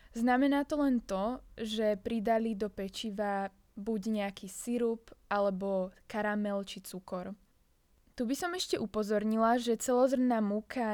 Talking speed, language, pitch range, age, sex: 125 wpm, Slovak, 205-235 Hz, 20-39, female